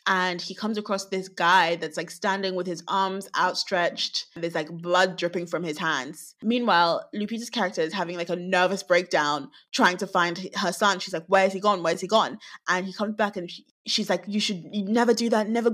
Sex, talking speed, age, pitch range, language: female, 215 wpm, 20-39, 175-205 Hz, English